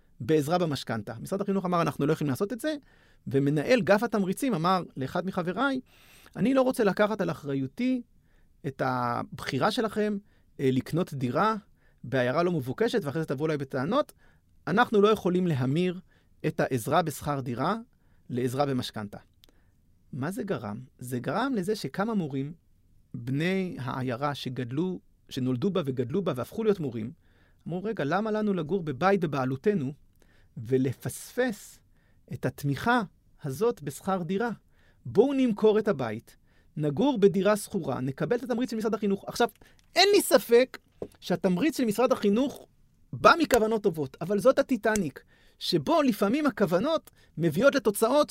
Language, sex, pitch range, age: Hebrew, male, 135-220 Hz, 40-59